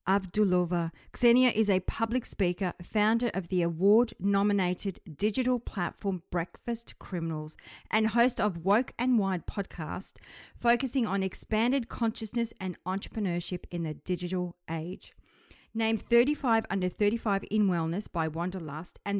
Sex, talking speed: female, 130 wpm